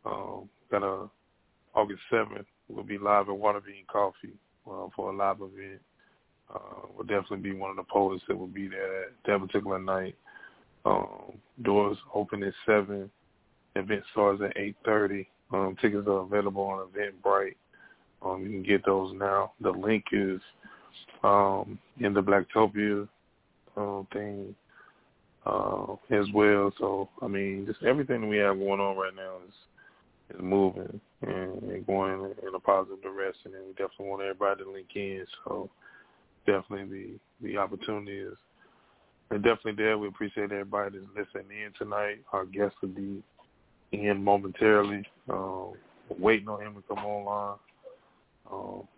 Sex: male